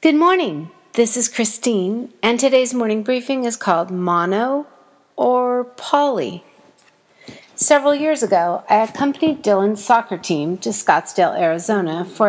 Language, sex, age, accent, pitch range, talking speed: English, female, 50-69, American, 195-260 Hz, 125 wpm